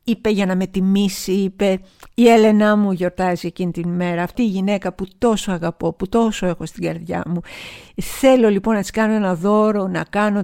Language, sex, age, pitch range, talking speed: Greek, female, 50-69, 180-225 Hz, 195 wpm